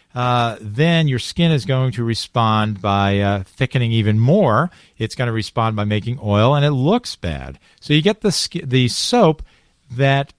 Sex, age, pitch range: male, 50-69, 105-140 Hz